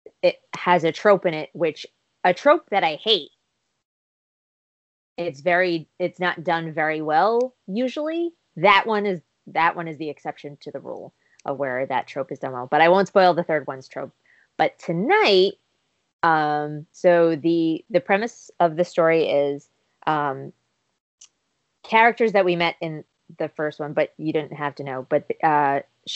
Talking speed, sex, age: 170 wpm, female, 20-39